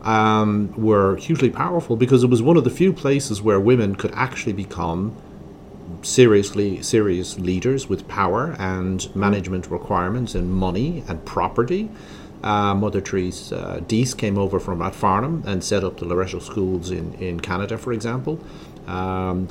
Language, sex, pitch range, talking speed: English, male, 90-110 Hz, 150 wpm